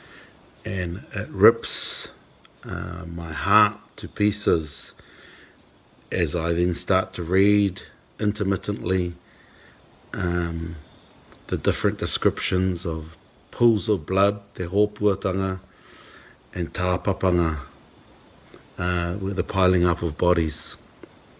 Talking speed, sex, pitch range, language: 95 wpm, male, 85-100 Hz, English